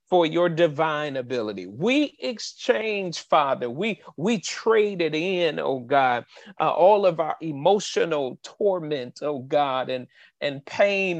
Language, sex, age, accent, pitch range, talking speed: English, male, 40-59, American, 155-215 Hz, 130 wpm